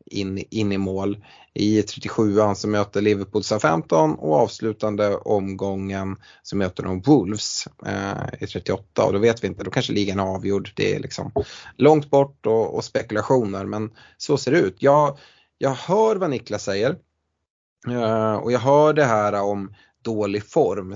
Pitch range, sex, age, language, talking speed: 100-115 Hz, male, 20-39, Swedish, 170 wpm